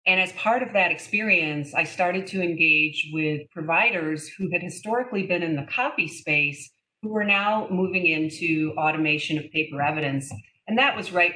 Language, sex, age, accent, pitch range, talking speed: English, female, 40-59, American, 155-185 Hz, 175 wpm